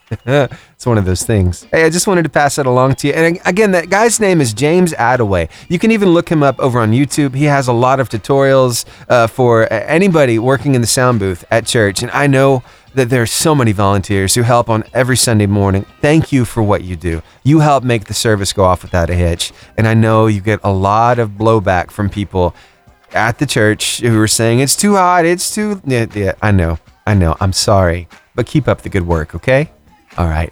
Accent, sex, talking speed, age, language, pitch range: American, male, 230 wpm, 30-49, English, 105-145 Hz